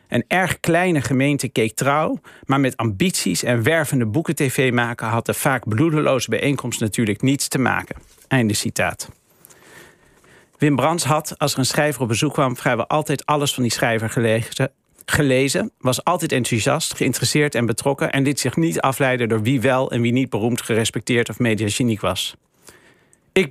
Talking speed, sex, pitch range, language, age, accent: 170 wpm, male, 115-145 Hz, Dutch, 50-69, Dutch